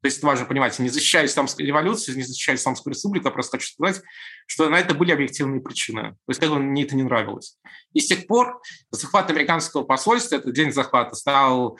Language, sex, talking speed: Russian, male, 200 wpm